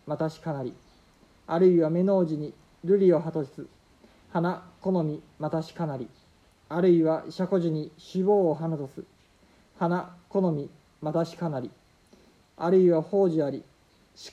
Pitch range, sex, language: 150-180 Hz, male, Japanese